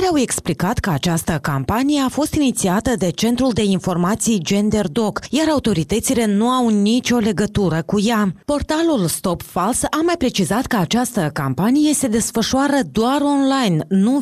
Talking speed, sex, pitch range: 150 wpm, female, 185-255 Hz